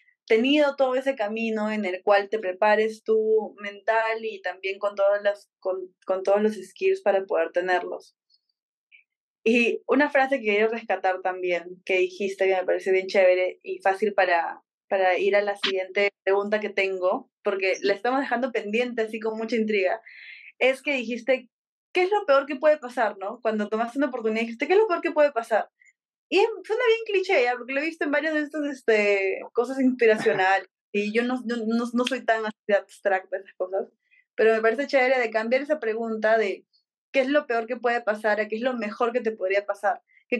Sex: female